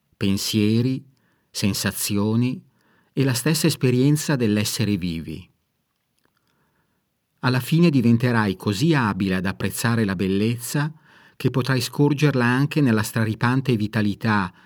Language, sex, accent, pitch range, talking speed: Italian, male, native, 105-130 Hz, 100 wpm